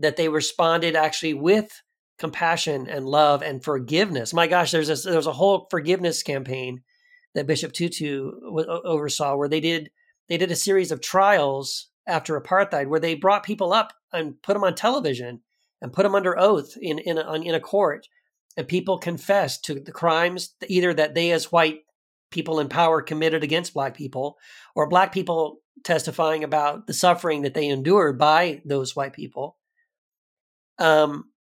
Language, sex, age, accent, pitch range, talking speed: English, male, 40-59, American, 150-190 Hz, 170 wpm